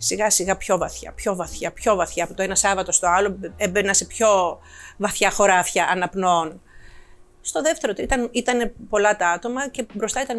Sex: female